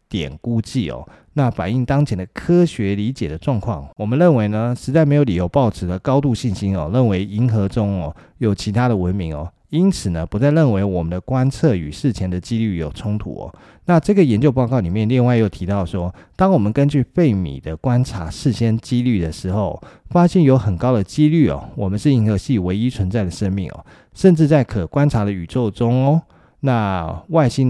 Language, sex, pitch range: Chinese, male, 95-135 Hz